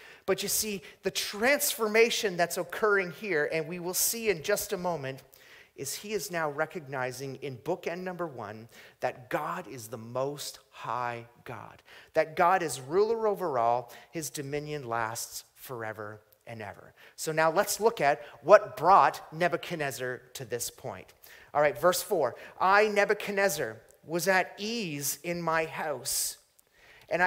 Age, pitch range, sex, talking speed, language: 30-49, 145-195 Hz, male, 150 wpm, English